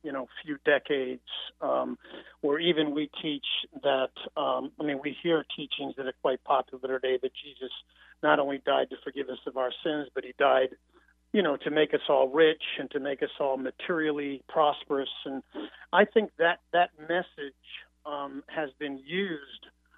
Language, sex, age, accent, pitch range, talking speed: English, male, 50-69, American, 135-165 Hz, 175 wpm